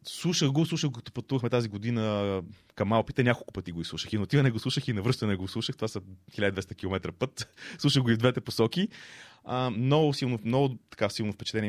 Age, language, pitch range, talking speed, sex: 30-49, Bulgarian, 95-120 Hz, 205 wpm, male